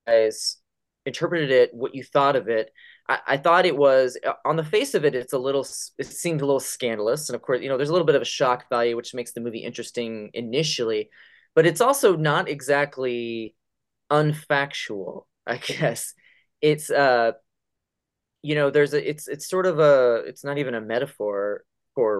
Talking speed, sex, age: 190 wpm, male, 20-39